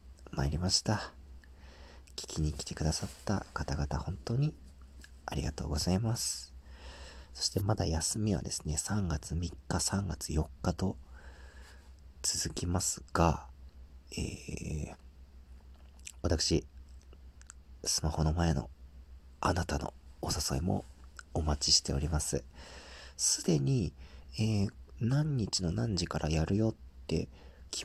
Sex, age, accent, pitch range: male, 40-59, native, 70-95 Hz